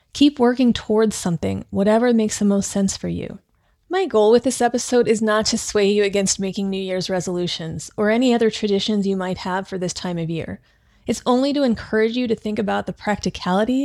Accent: American